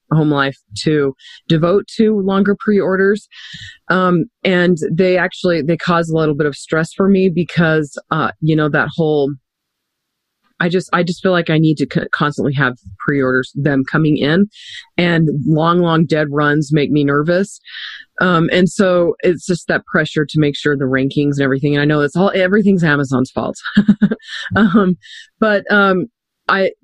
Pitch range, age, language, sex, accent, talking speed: 145-175 Hz, 30-49, English, female, American, 170 wpm